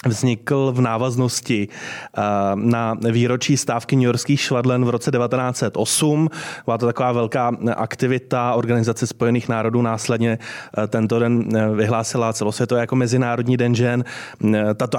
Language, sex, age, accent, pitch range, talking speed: Czech, male, 30-49, native, 110-125 Hz, 120 wpm